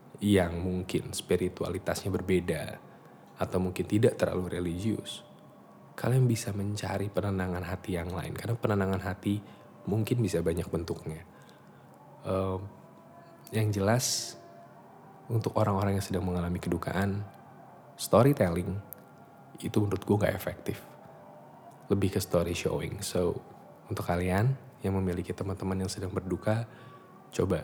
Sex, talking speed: male, 115 wpm